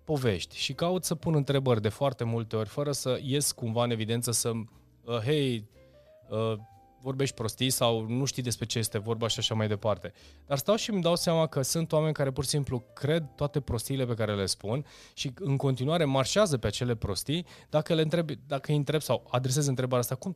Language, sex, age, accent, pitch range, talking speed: Romanian, male, 20-39, native, 110-145 Hz, 205 wpm